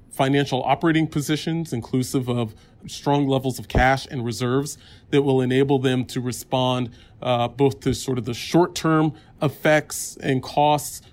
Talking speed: 145 wpm